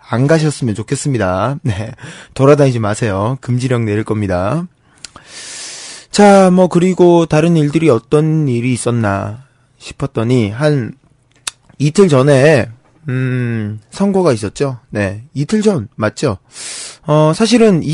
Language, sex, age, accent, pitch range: Korean, male, 20-39, native, 115-165 Hz